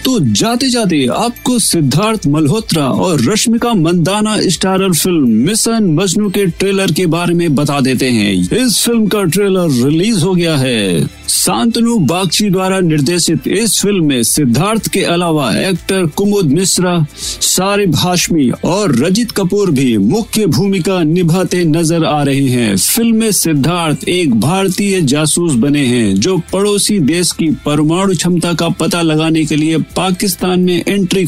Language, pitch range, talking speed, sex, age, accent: Hindi, 160-215 Hz, 145 wpm, male, 50-69, native